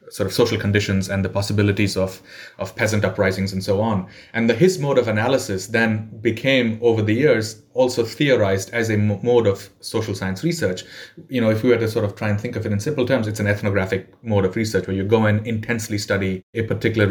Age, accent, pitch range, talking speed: 30-49, Indian, 100-120 Hz, 225 wpm